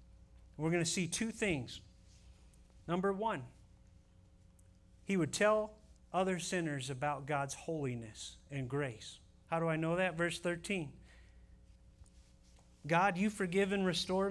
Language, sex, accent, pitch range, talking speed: English, male, American, 125-185 Hz, 125 wpm